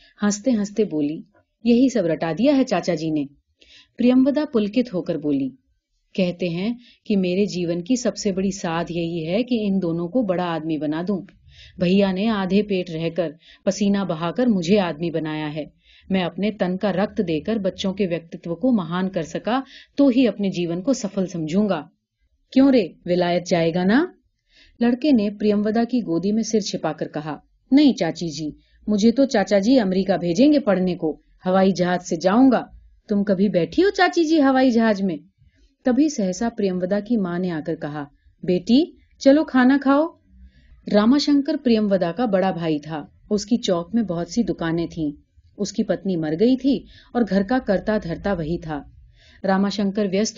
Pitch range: 170-230 Hz